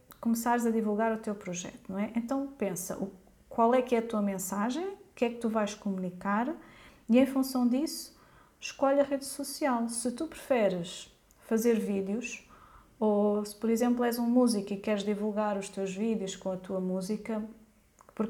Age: 30-49